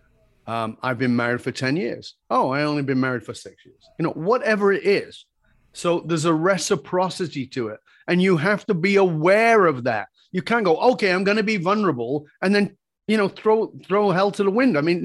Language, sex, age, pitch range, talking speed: English, male, 40-59, 140-200 Hz, 220 wpm